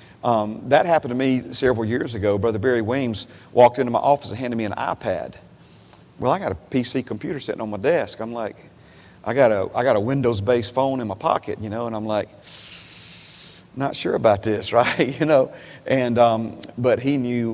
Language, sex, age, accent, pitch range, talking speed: English, male, 40-59, American, 110-140 Hz, 205 wpm